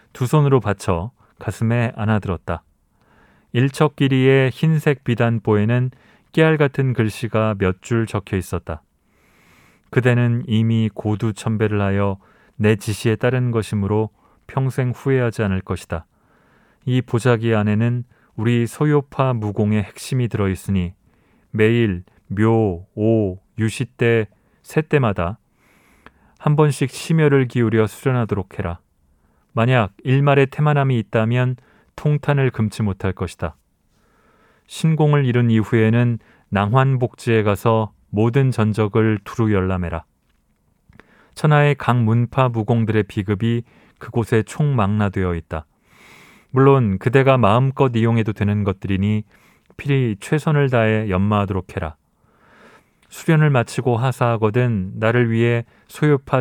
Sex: male